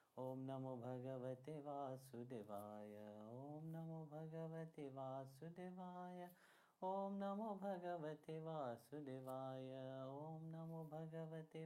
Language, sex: Italian, male